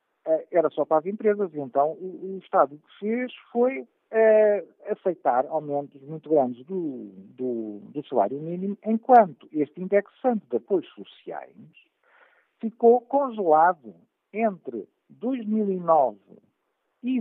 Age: 60-79